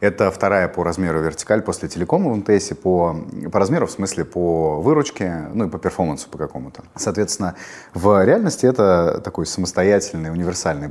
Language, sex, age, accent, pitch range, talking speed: Russian, male, 30-49, native, 85-100 Hz, 160 wpm